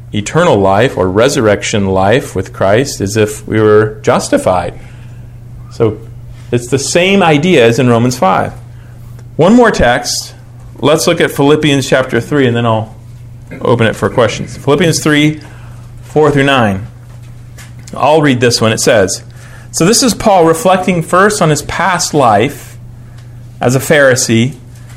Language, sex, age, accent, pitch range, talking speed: English, male, 40-59, American, 120-155 Hz, 145 wpm